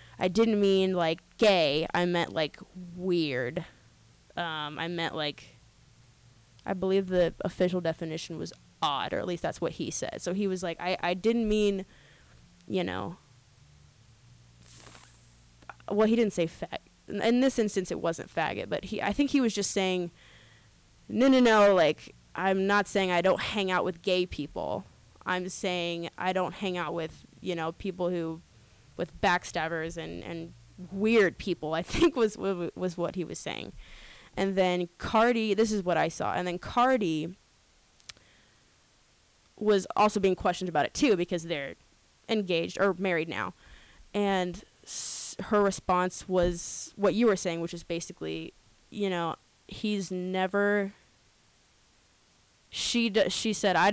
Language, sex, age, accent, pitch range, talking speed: English, female, 20-39, American, 165-200 Hz, 155 wpm